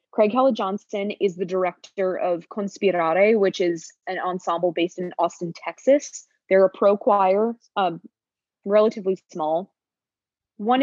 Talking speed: 125 wpm